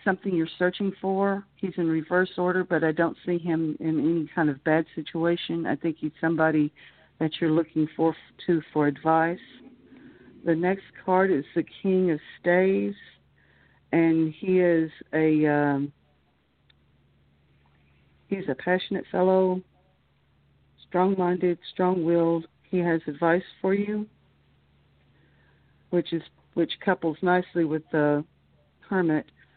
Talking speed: 130 wpm